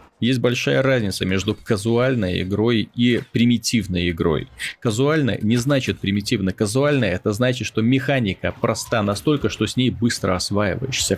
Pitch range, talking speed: 100-120 Hz, 135 wpm